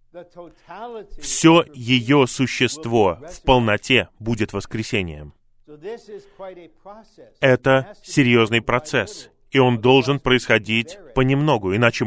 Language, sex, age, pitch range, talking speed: Russian, male, 20-39, 115-140 Hz, 80 wpm